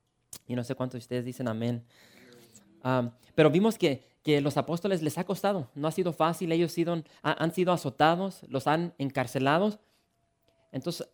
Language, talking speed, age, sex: English, 165 wpm, 20-39, male